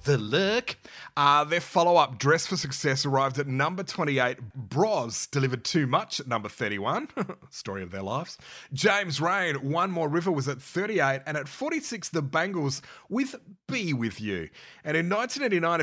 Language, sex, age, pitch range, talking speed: English, male, 30-49, 125-170 Hz, 165 wpm